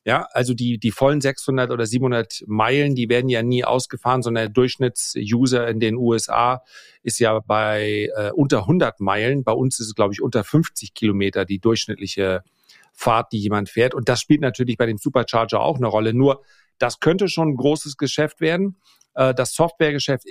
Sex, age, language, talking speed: male, 40-59, German, 185 wpm